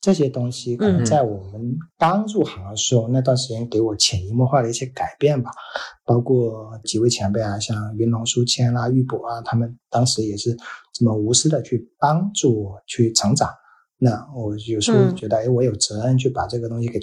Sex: male